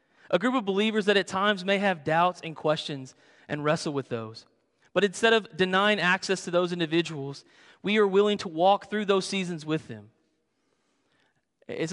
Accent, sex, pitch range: American, male, 145-195 Hz